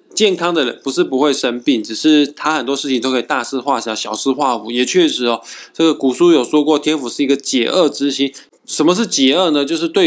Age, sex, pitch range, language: 20-39, male, 125-175 Hz, Chinese